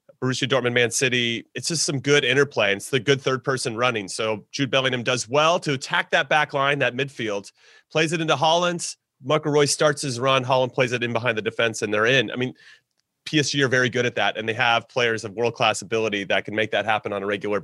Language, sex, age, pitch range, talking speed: English, male, 30-49, 120-150 Hz, 230 wpm